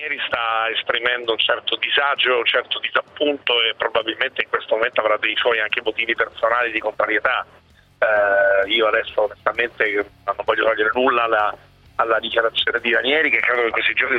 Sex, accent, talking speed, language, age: male, native, 170 wpm, Italian, 40-59